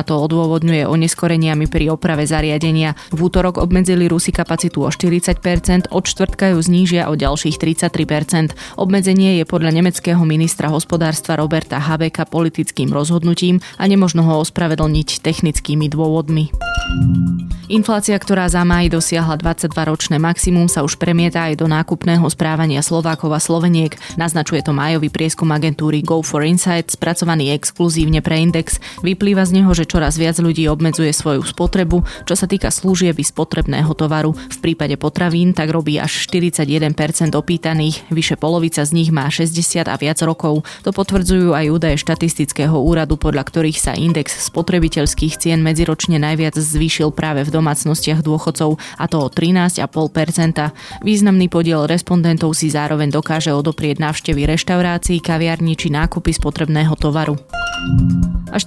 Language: Slovak